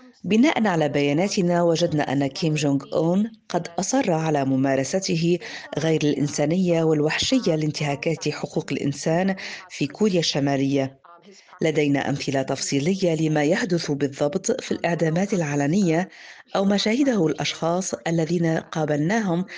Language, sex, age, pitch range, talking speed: Arabic, female, 40-59, 145-190 Hz, 110 wpm